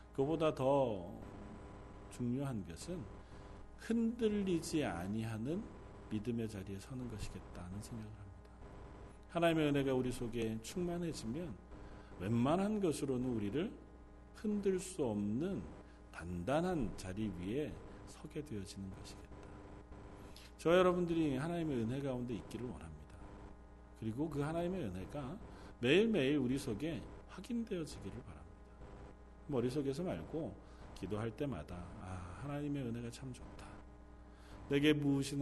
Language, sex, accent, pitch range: Korean, male, native, 100-150 Hz